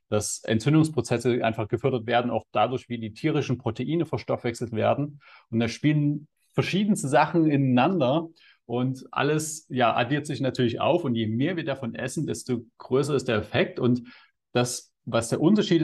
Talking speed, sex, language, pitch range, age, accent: 160 wpm, male, German, 110-145 Hz, 30-49, German